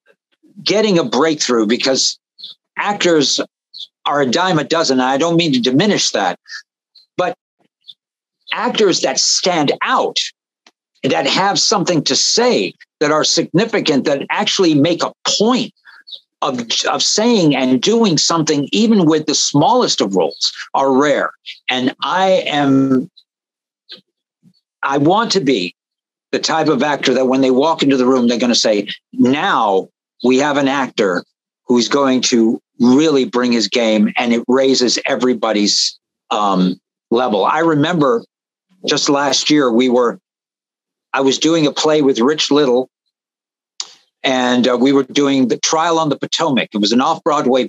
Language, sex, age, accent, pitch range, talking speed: English, male, 60-79, American, 125-160 Hz, 145 wpm